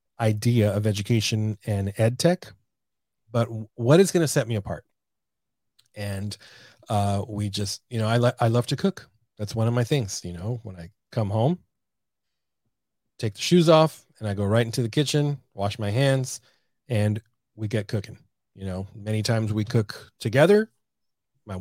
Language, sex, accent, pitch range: English, male, American, 105-130 Hz